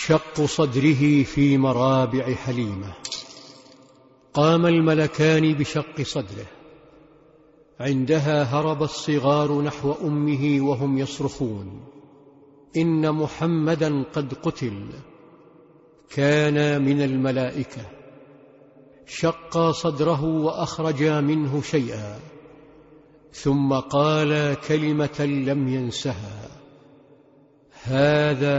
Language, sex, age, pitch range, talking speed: English, male, 50-69, 140-155 Hz, 70 wpm